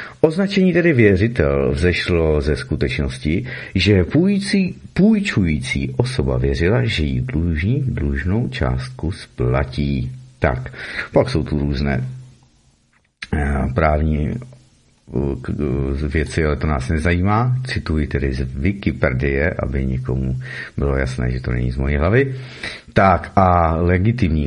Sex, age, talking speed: male, 50-69, 110 wpm